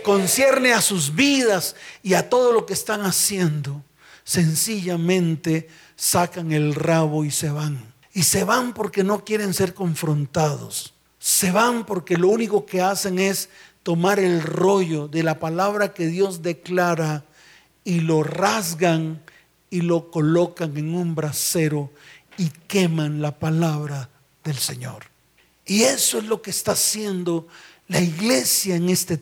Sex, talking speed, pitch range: male, 140 wpm, 165-225 Hz